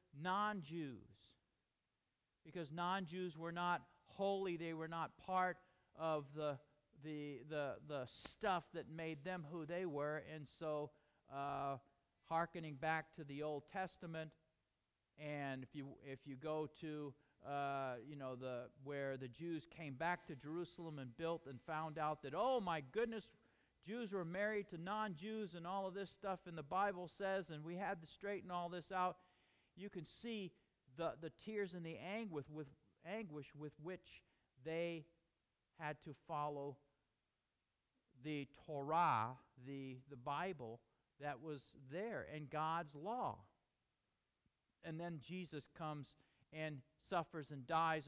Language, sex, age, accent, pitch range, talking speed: English, male, 40-59, American, 145-185 Hz, 145 wpm